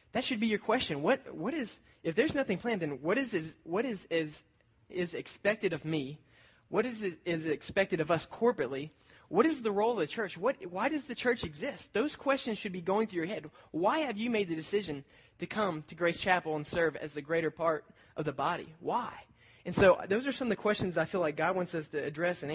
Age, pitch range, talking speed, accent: 20-39, 145-185 Hz, 235 wpm, American